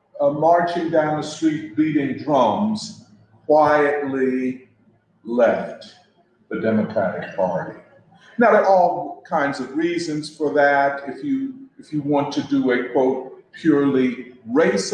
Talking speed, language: 120 wpm, English